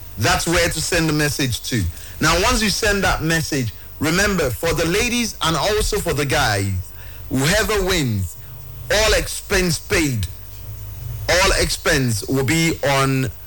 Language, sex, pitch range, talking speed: English, male, 105-165 Hz, 145 wpm